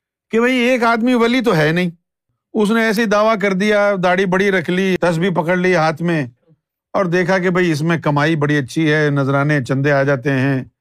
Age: 50-69